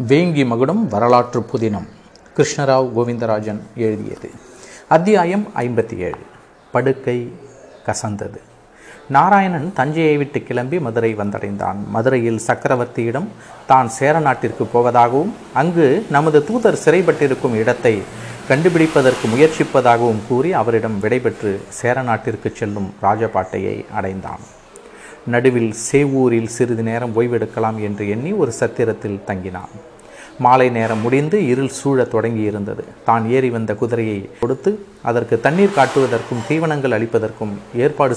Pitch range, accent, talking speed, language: 110-140 Hz, native, 100 wpm, Tamil